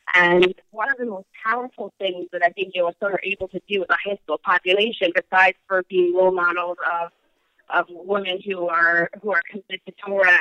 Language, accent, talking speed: English, American, 210 wpm